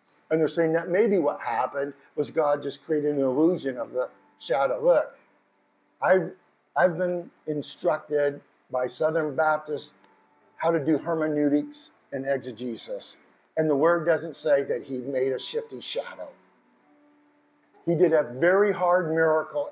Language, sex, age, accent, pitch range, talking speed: English, male, 50-69, American, 140-180 Hz, 145 wpm